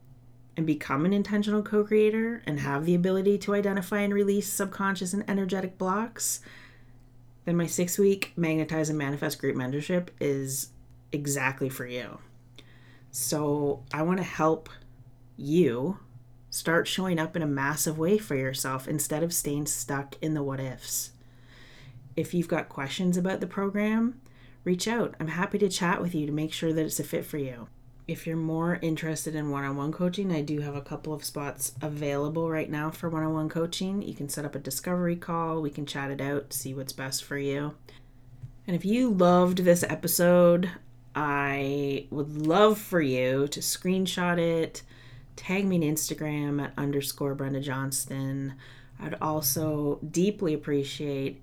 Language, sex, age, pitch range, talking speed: English, female, 30-49, 135-175 Hz, 160 wpm